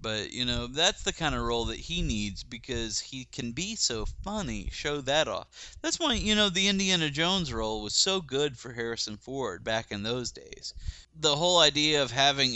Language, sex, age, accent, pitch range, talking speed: English, male, 30-49, American, 110-145 Hz, 205 wpm